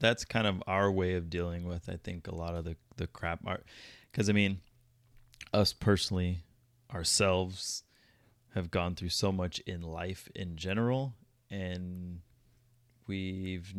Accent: American